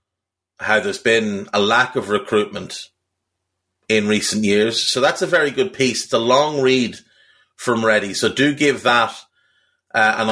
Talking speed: 165 wpm